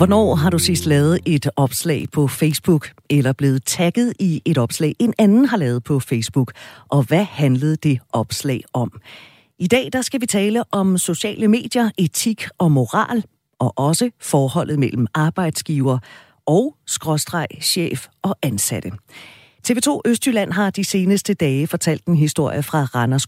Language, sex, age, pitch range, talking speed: Danish, female, 40-59, 140-200 Hz, 155 wpm